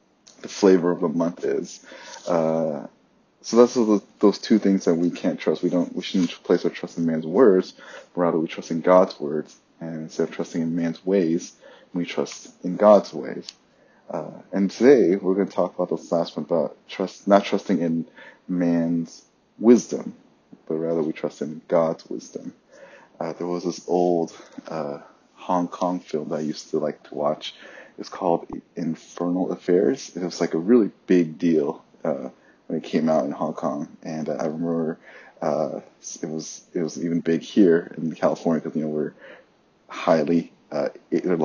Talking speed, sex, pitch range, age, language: 185 wpm, male, 80-95 Hz, 20-39, English